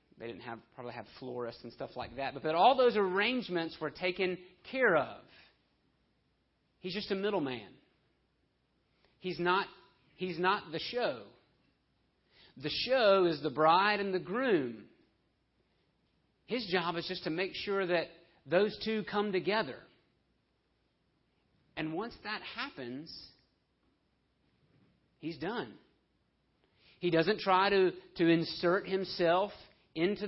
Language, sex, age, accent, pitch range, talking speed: English, male, 40-59, American, 145-190 Hz, 125 wpm